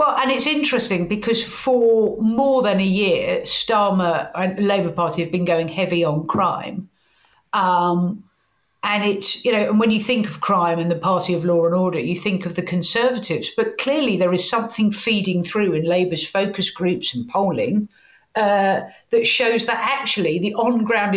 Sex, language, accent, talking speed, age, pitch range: female, English, British, 180 wpm, 50-69, 185-230 Hz